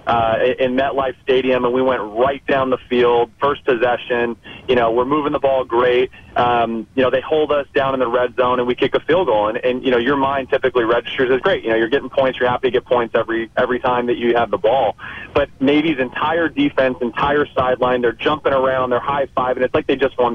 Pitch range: 120-140 Hz